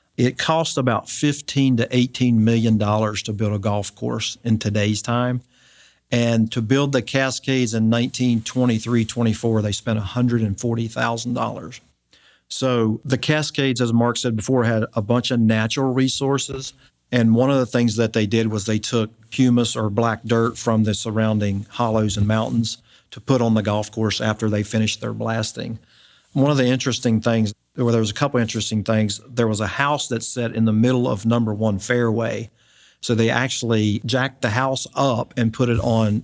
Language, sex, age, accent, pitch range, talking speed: English, male, 50-69, American, 110-125 Hz, 180 wpm